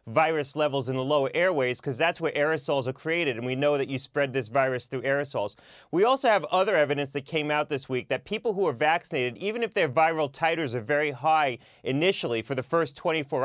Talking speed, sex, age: 225 wpm, male, 30-49